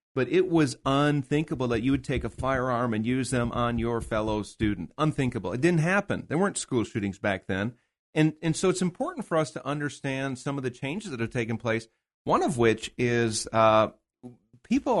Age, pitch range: 40-59, 110-140 Hz